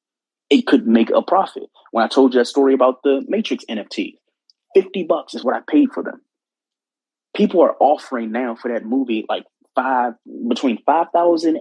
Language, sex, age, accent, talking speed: English, male, 20-39, American, 175 wpm